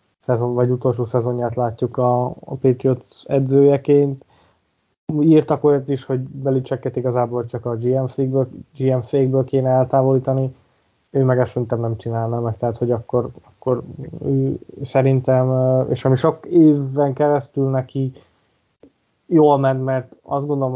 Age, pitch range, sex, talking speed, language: 20-39, 120-135 Hz, male, 125 wpm, Hungarian